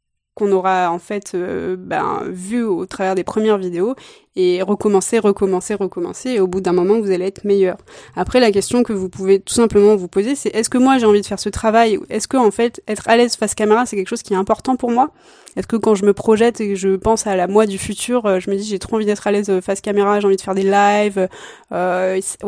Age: 20-39